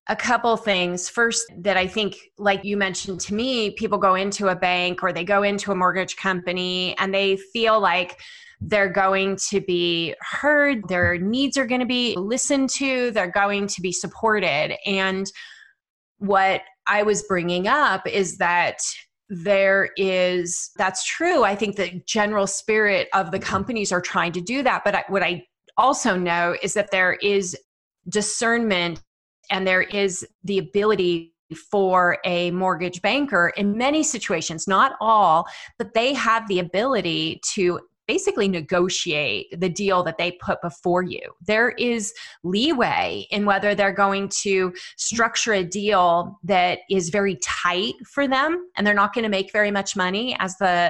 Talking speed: 165 wpm